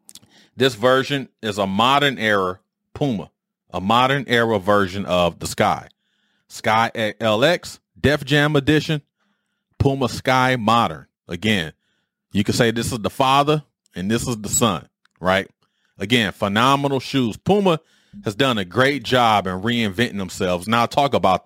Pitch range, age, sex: 110-160 Hz, 30-49, male